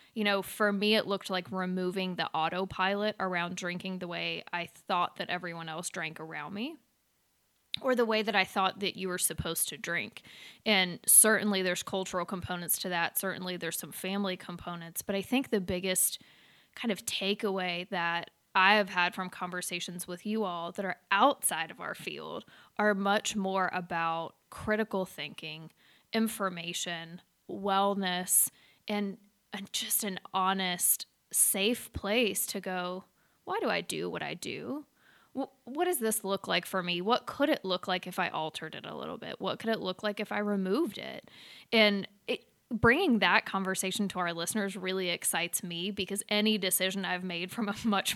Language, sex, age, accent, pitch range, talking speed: English, female, 20-39, American, 180-210 Hz, 175 wpm